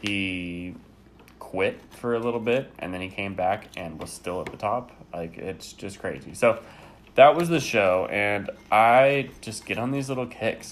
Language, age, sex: English, 20-39, male